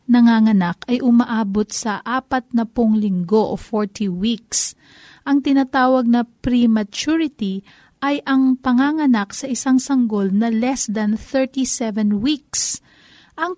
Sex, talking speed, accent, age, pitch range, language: female, 110 wpm, native, 40-59, 220-275 Hz, Filipino